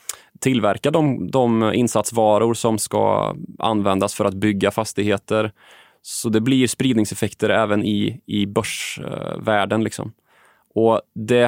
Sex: male